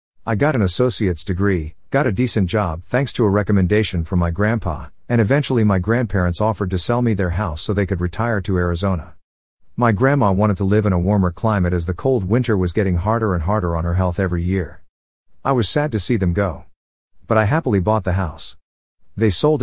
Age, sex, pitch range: 50-69, male, 90-110 Hz